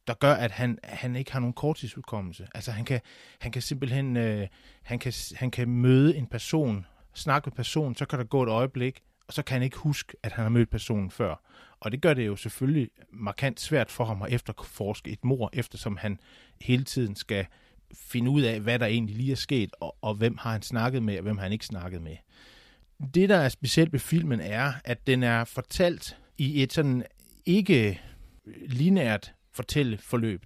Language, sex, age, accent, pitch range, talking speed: Danish, male, 30-49, native, 105-135 Hz, 205 wpm